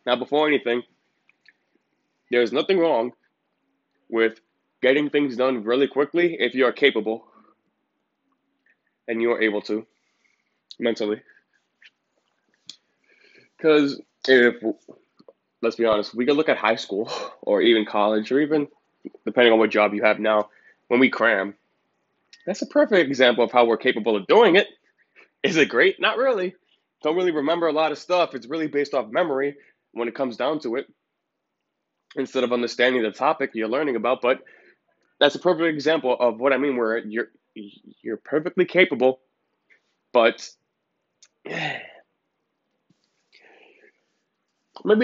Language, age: English, 20-39